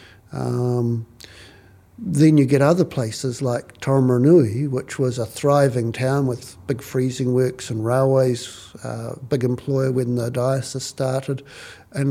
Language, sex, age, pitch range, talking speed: English, male, 50-69, 120-135 Hz, 135 wpm